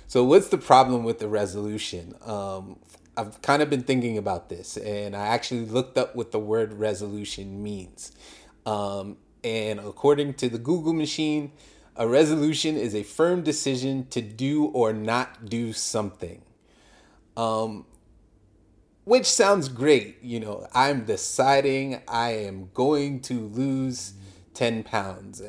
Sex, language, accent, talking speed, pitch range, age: male, English, American, 140 wpm, 105-130 Hz, 30-49